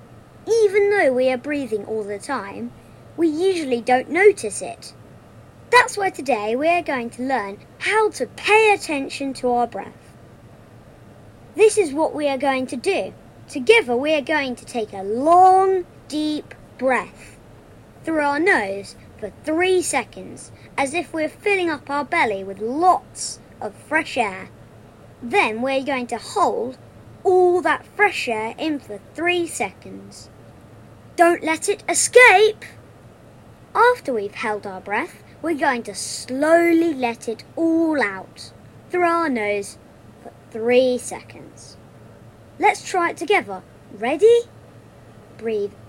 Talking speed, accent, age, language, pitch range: 140 wpm, British, 30-49, English, 220-340 Hz